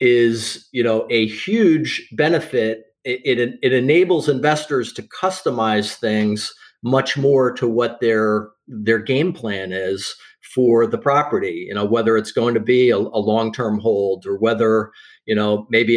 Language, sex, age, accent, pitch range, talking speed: English, male, 40-59, American, 105-125 Hz, 160 wpm